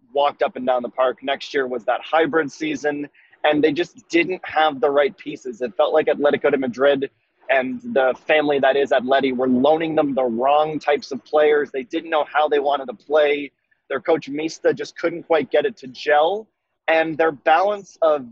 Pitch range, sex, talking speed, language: 140-160 Hz, male, 205 wpm, English